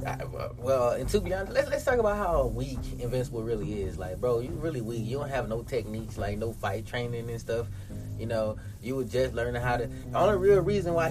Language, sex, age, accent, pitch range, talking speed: English, male, 20-39, American, 115-155 Hz, 240 wpm